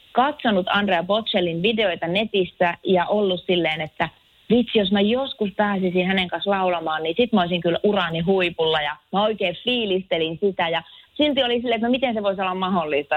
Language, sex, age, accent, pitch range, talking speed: Finnish, female, 30-49, native, 175-235 Hz, 180 wpm